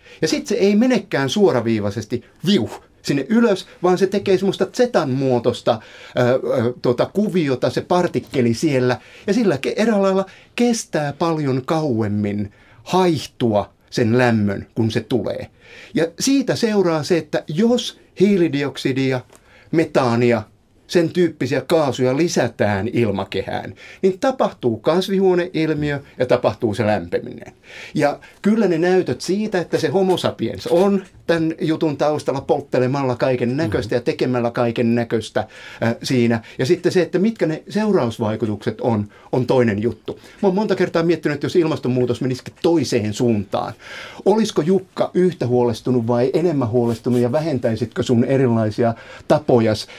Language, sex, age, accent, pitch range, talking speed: Finnish, male, 60-79, native, 120-180 Hz, 130 wpm